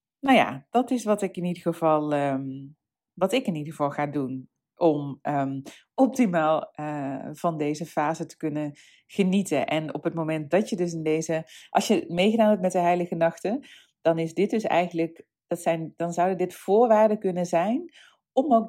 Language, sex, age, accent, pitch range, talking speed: Dutch, female, 40-59, Dutch, 155-200 Hz, 175 wpm